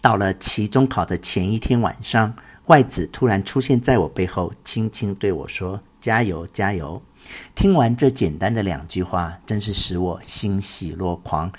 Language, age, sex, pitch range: Chinese, 50-69, male, 95-125 Hz